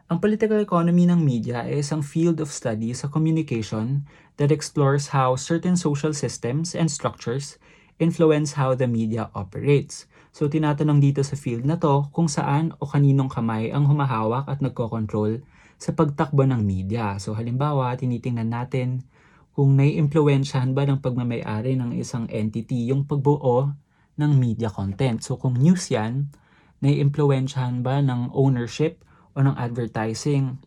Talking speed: 145 wpm